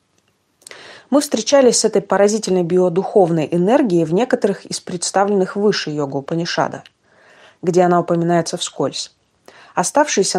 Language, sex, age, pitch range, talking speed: Russian, female, 30-49, 165-210 Hz, 105 wpm